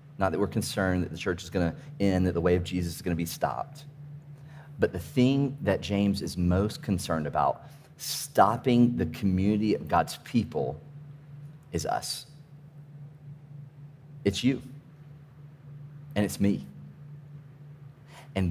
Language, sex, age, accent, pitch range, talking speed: English, male, 40-59, American, 95-145 Hz, 135 wpm